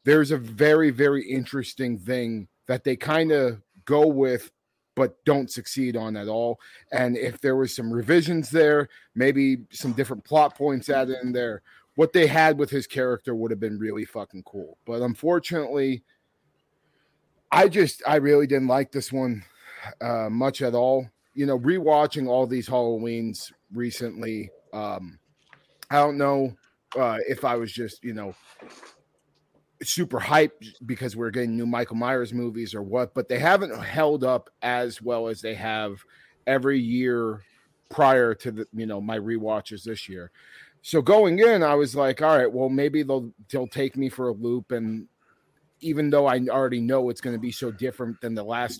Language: English